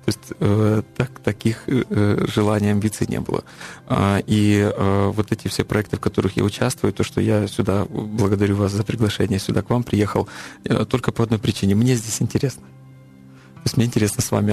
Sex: male